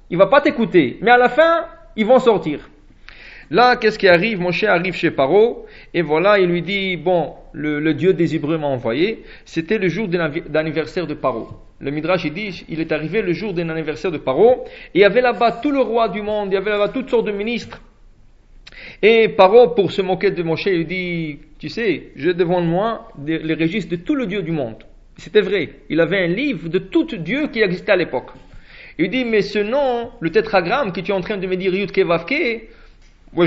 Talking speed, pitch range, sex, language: 220 wpm, 165-220 Hz, male, English